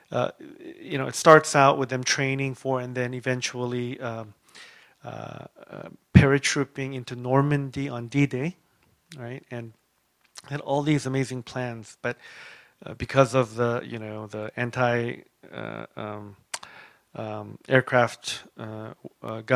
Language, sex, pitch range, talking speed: English, male, 120-145 Hz, 130 wpm